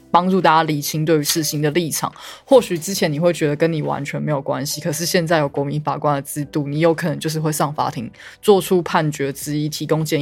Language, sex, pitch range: Chinese, female, 155-190 Hz